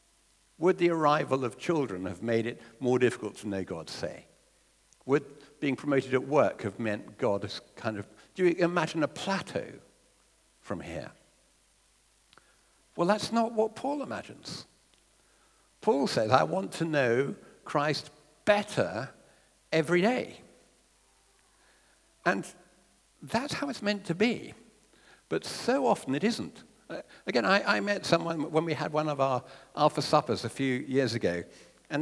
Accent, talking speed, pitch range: British, 150 wpm, 125-185 Hz